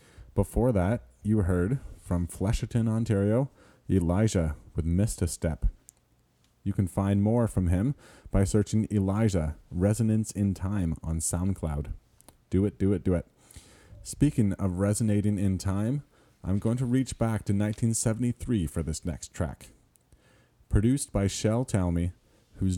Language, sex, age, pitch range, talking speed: English, male, 30-49, 95-115 Hz, 140 wpm